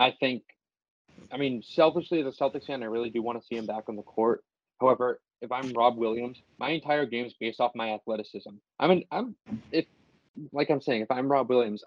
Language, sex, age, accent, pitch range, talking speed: English, male, 20-39, American, 120-155 Hz, 220 wpm